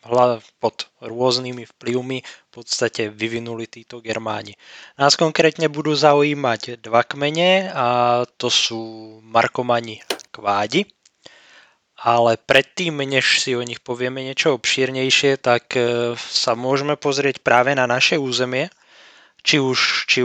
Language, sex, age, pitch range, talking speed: Slovak, male, 20-39, 115-135 Hz, 115 wpm